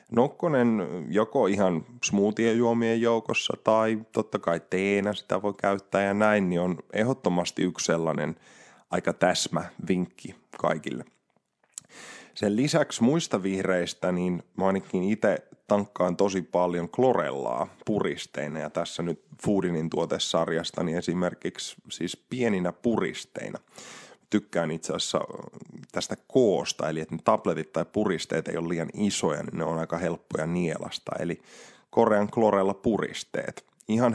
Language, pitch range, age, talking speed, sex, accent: Finnish, 85-105 Hz, 20-39, 125 wpm, male, native